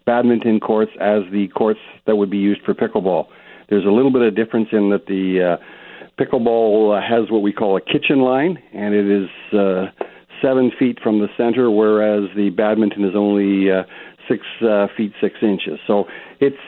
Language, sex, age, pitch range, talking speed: English, male, 50-69, 105-125 Hz, 185 wpm